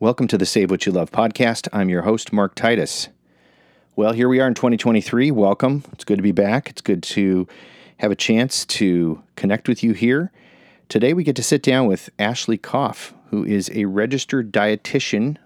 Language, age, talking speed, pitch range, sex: English, 40-59, 195 wpm, 95-115 Hz, male